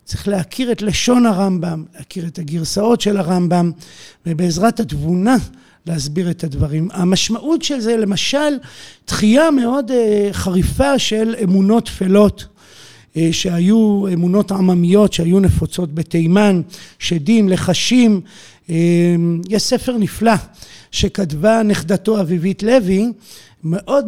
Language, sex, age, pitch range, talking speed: Hebrew, male, 50-69, 170-215 Hz, 100 wpm